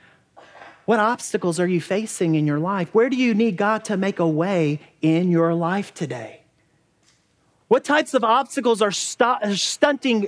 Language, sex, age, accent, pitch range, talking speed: English, male, 30-49, American, 160-220 Hz, 160 wpm